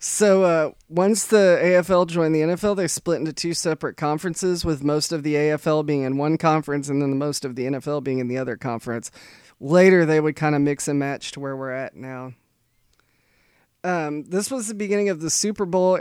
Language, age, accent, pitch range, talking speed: English, 30-49, American, 145-180 Hz, 210 wpm